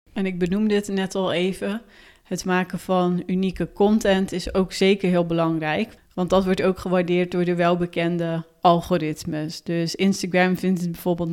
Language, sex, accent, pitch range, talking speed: Dutch, female, Dutch, 175-190 Hz, 165 wpm